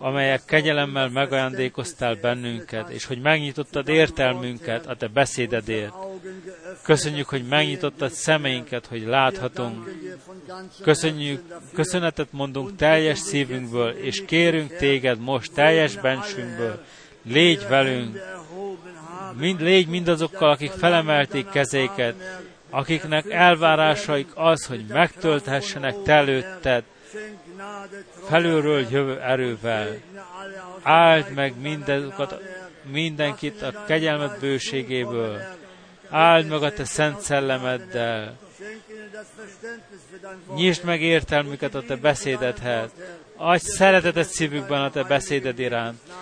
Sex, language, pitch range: male, Hungarian, 130-175 Hz